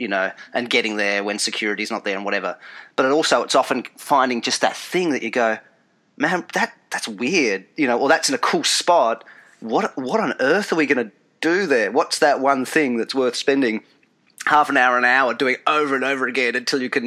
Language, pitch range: English, 110-145 Hz